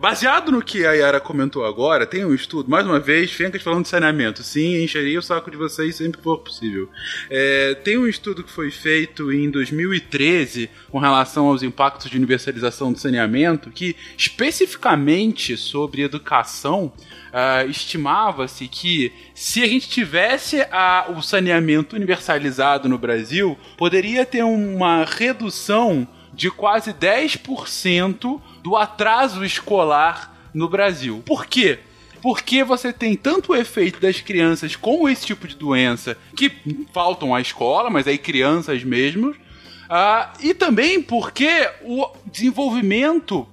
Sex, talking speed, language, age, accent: male, 140 wpm, Portuguese, 20-39, Brazilian